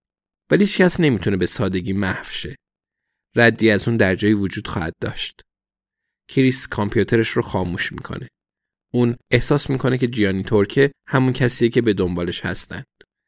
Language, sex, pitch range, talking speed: Persian, male, 100-130 Hz, 140 wpm